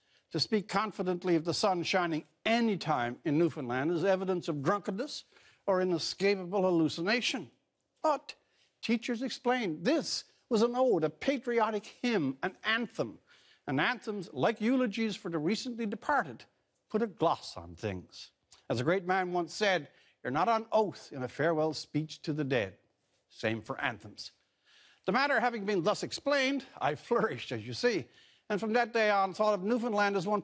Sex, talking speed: male, 165 wpm